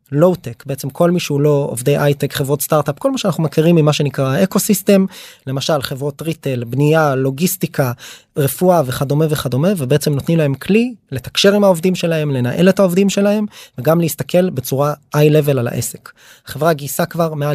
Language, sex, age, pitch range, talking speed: Hebrew, male, 20-39, 135-185 Hz, 170 wpm